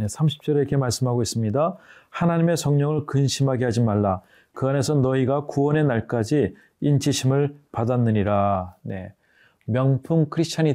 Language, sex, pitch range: Korean, male, 115-145 Hz